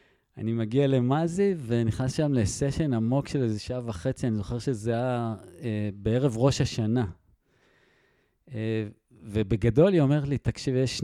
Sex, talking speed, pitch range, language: male, 130 wpm, 110-135 Hz, Hebrew